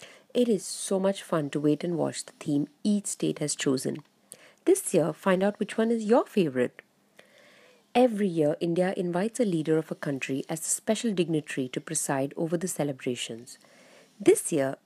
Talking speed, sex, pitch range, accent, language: 180 wpm, female, 155-220 Hz, Indian, English